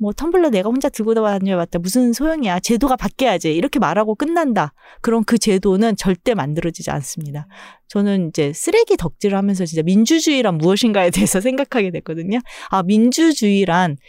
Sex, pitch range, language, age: female, 175-260 Hz, Korean, 30-49